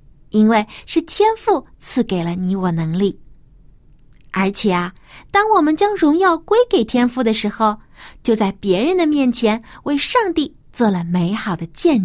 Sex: female